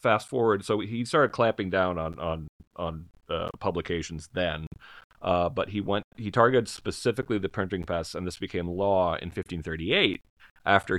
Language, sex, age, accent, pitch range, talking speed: English, male, 30-49, American, 85-100 Hz, 175 wpm